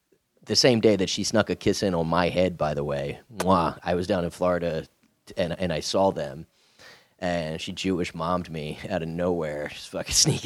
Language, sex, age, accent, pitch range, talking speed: English, male, 30-49, American, 85-105 Hz, 210 wpm